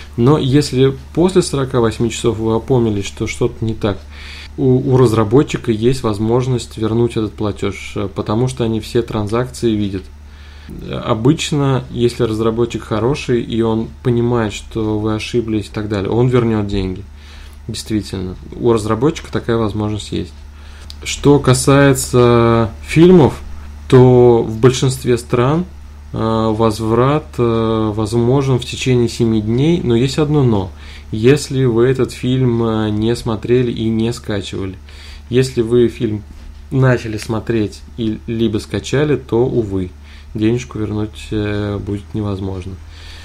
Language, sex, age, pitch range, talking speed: Russian, male, 20-39, 100-125 Hz, 120 wpm